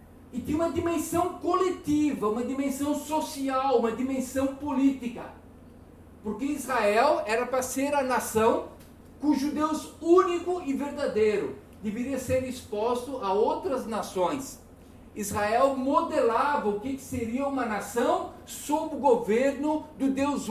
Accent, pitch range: Brazilian, 225-300 Hz